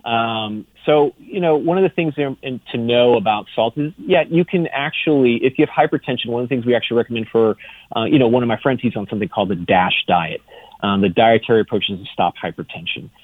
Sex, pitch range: male, 110-135 Hz